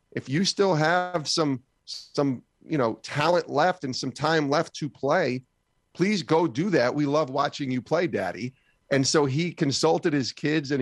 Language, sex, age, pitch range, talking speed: English, male, 40-59, 115-150 Hz, 185 wpm